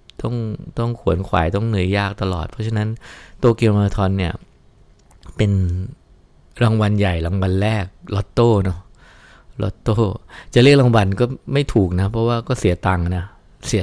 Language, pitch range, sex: English, 90-110 Hz, male